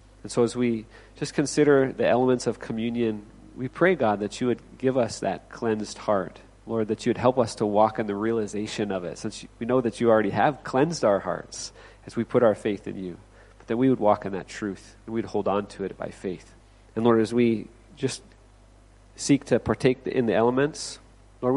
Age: 40-59